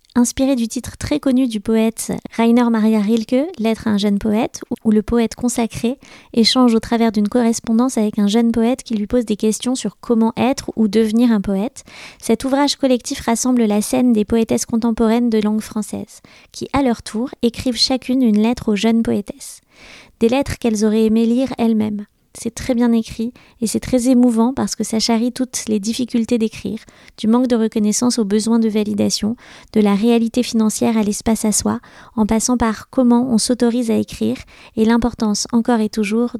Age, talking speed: 20-39, 190 wpm